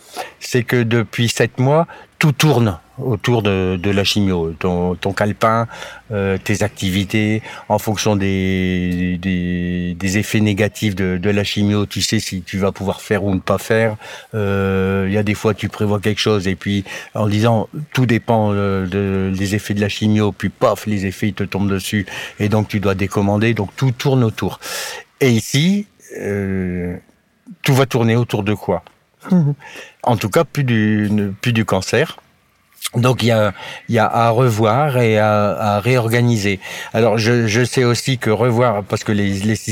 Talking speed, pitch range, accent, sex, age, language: 180 wpm, 100-120 Hz, French, male, 60-79, French